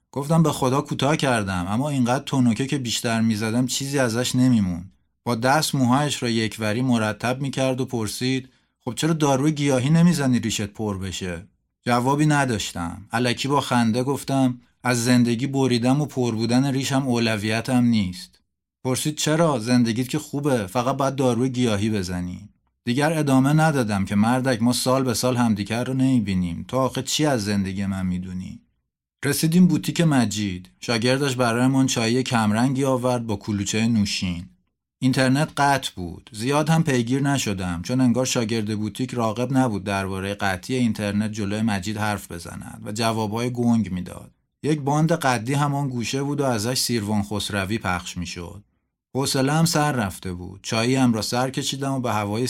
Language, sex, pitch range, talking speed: Persian, male, 105-130 Hz, 155 wpm